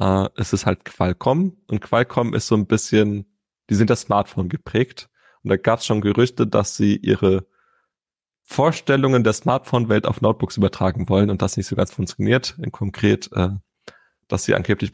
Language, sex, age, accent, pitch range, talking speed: German, male, 30-49, German, 100-125 Hz, 170 wpm